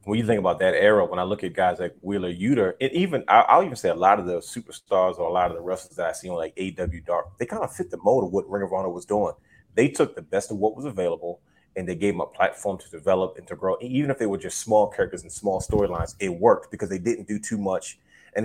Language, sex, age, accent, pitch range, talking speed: English, male, 30-49, American, 90-110 Hz, 285 wpm